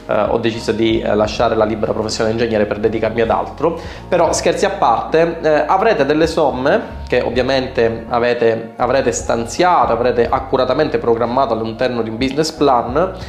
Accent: native